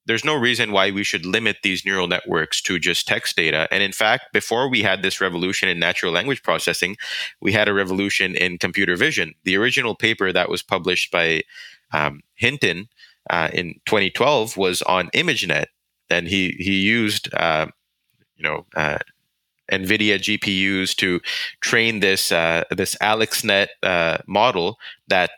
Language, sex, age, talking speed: English, male, 20-39, 160 wpm